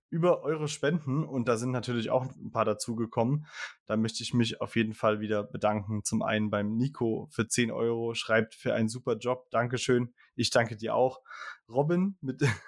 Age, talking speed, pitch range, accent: 20-39, 185 wpm, 110-130 Hz, German